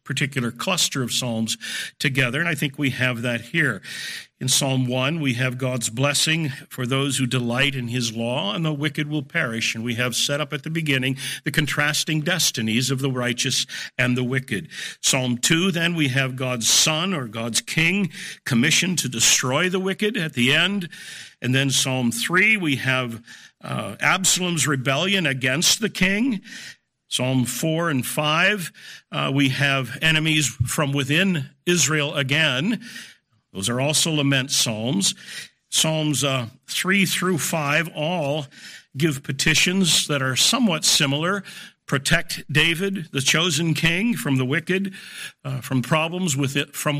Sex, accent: male, American